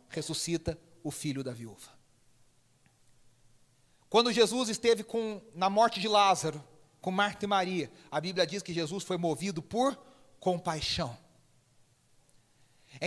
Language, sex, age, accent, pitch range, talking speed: Portuguese, male, 40-59, Brazilian, 150-235 Hz, 125 wpm